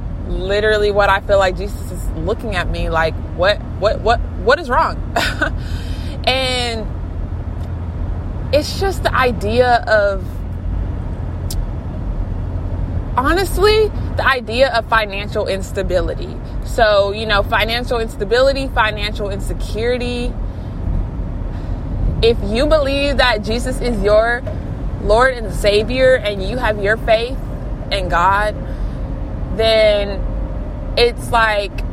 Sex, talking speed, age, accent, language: female, 105 wpm, 20-39, American, English